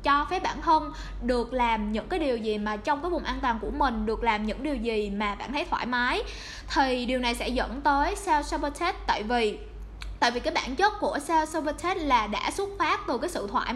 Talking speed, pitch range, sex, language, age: 225 wpm, 240-335 Hz, female, Vietnamese, 10-29